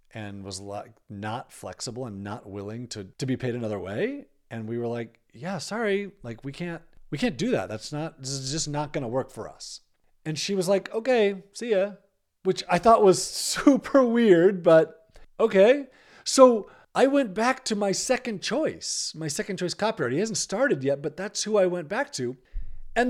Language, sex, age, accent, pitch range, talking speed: English, male, 40-59, American, 145-215 Hz, 195 wpm